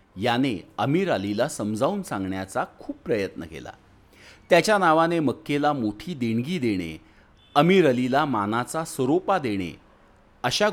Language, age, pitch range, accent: Marathi, 40-59, 100-140 Hz, native